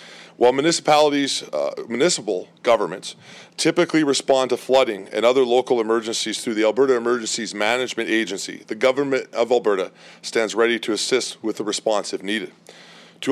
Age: 40-59